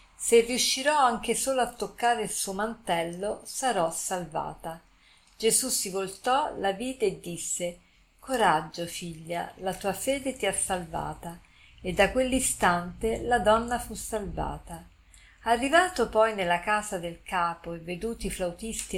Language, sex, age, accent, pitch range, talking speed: Italian, female, 50-69, native, 175-230 Hz, 135 wpm